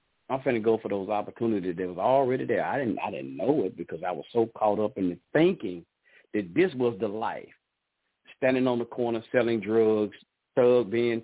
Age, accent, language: 40-59, American, English